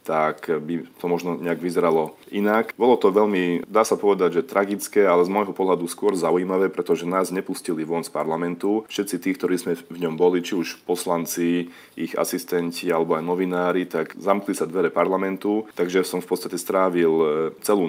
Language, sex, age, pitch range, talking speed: Slovak, male, 30-49, 85-90 Hz, 180 wpm